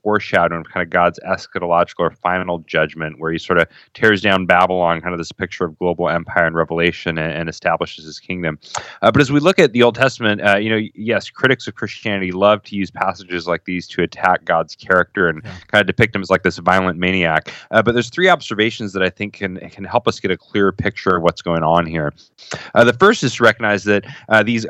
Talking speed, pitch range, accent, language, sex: 235 wpm, 85-115 Hz, American, English, male